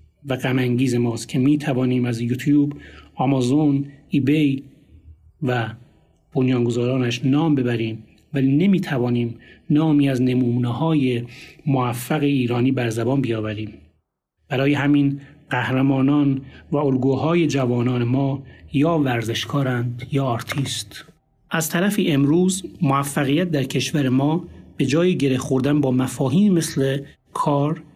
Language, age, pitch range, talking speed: Persian, 30-49, 125-155 Hz, 115 wpm